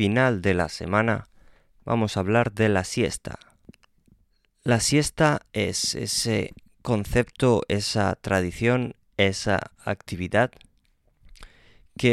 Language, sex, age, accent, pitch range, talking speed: Spanish, male, 20-39, Spanish, 90-110 Hz, 100 wpm